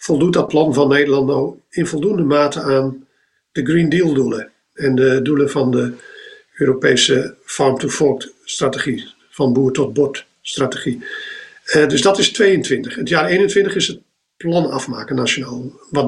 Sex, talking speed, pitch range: male, 155 wpm, 135-175 Hz